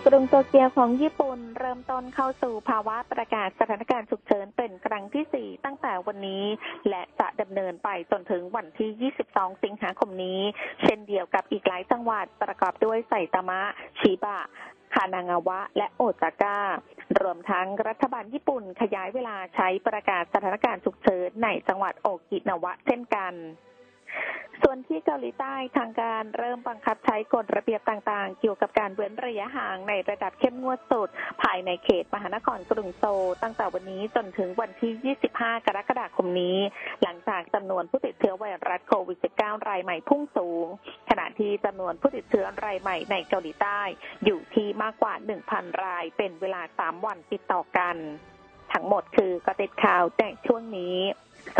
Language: Thai